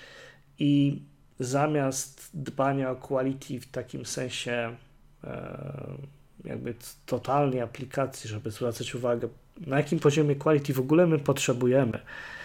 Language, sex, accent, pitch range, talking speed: Polish, male, native, 125-150 Hz, 110 wpm